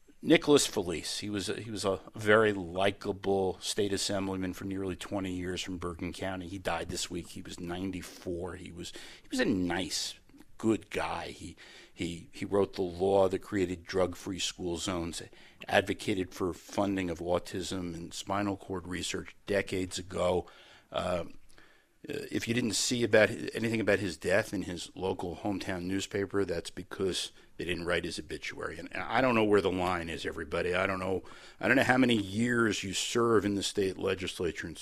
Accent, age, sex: American, 50-69, male